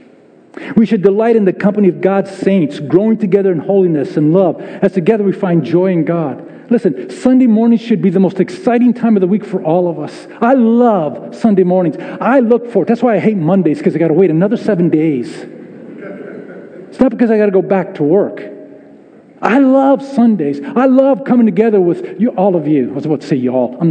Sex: male